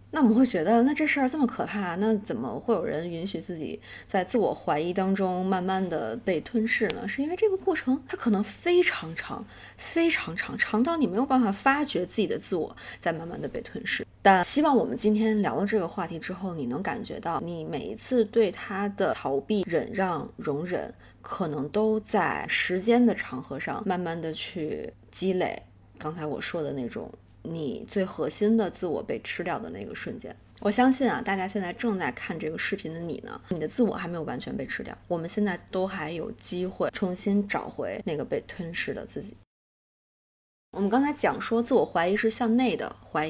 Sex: female